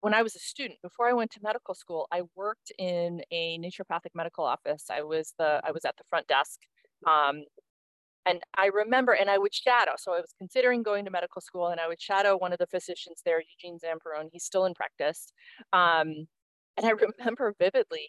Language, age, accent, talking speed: English, 30-49, American, 210 wpm